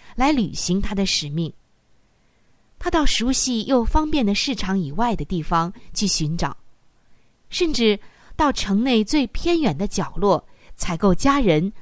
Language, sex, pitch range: Chinese, female, 165-255 Hz